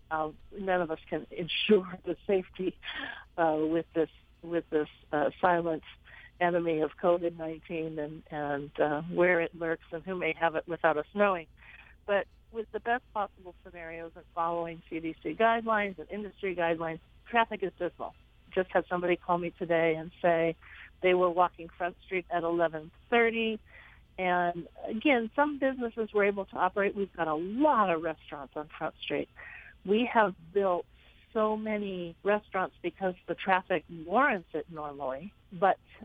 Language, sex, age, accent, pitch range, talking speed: English, female, 50-69, American, 165-205 Hz, 155 wpm